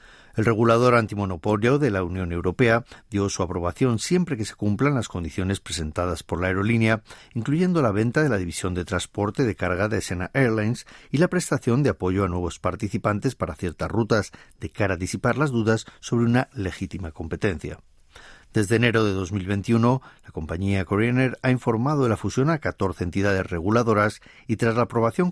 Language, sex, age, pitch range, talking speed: Spanish, male, 50-69, 95-120 Hz, 180 wpm